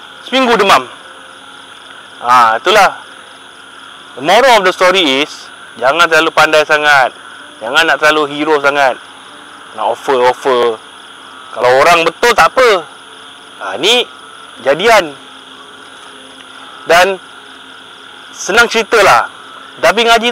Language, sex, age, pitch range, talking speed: Malay, male, 30-49, 150-235 Hz, 100 wpm